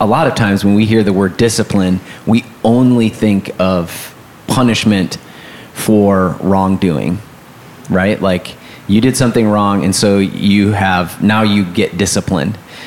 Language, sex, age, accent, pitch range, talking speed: English, male, 30-49, American, 95-115 Hz, 145 wpm